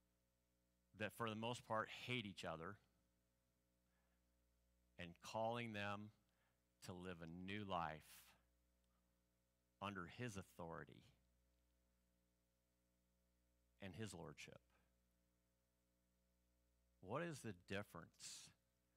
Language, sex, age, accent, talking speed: English, male, 50-69, American, 80 wpm